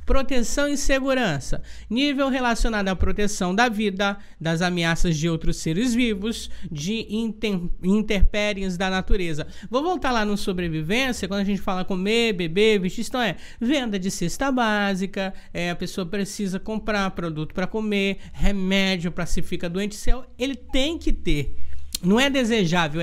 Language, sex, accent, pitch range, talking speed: Portuguese, male, Brazilian, 190-250 Hz, 145 wpm